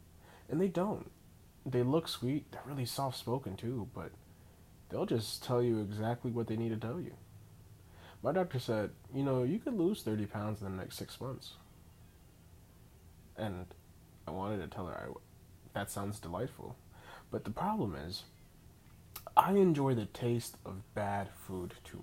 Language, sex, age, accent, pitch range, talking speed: English, male, 20-39, American, 95-125 Hz, 160 wpm